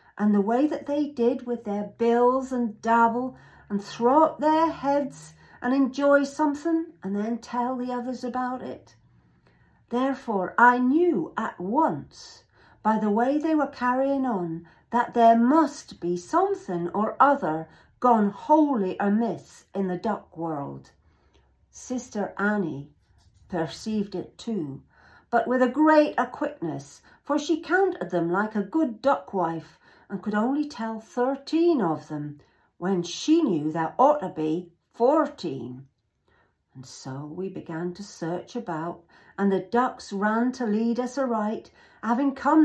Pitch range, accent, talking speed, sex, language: 175-250 Hz, British, 145 wpm, female, English